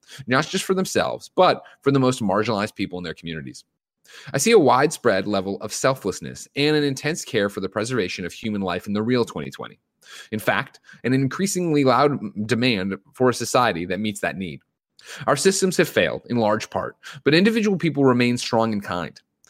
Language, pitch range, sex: English, 105-145 Hz, male